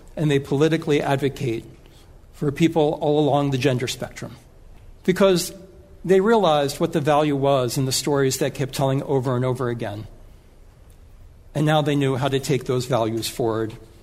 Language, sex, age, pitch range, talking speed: English, male, 60-79, 120-160 Hz, 165 wpm